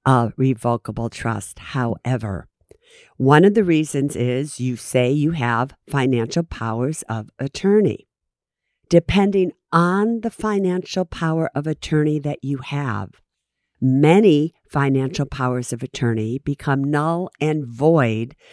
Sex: female